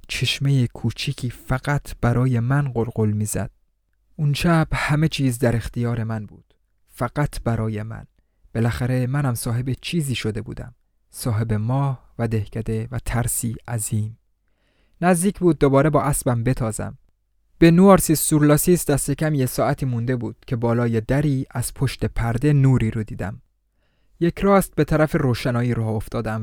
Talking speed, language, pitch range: 140 wpm, Persian, 110-135 Hz